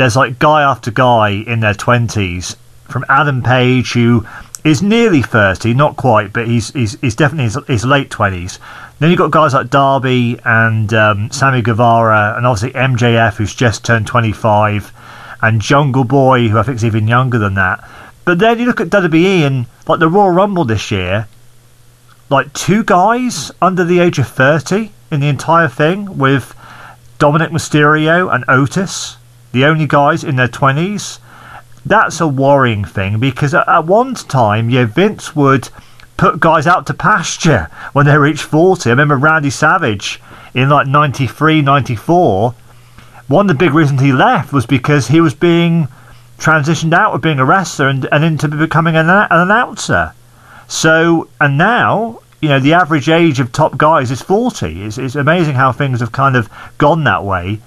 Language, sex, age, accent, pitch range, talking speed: English, male, 40-59, British, 120-160 Hz, 175 wpm